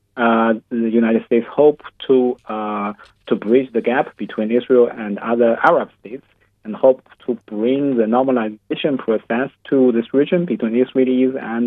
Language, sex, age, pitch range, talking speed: English, male, 30-49, 105-125 Hz, 155 wpm